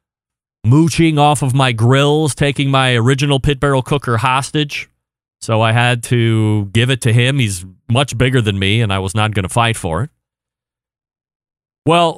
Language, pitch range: English, 115-155 Hz